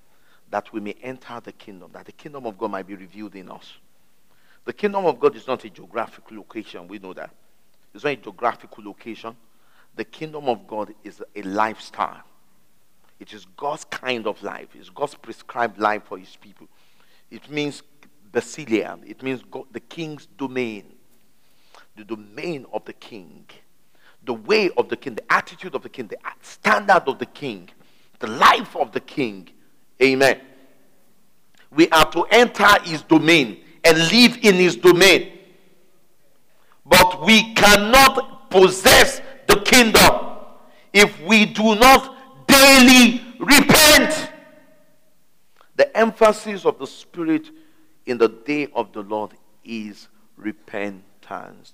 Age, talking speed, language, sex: 50-69, 145 wpm, English, male